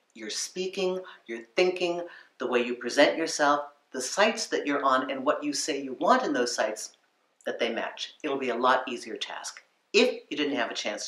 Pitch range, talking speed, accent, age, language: 120-175 Hz, 205 wpm, American, 50-69, English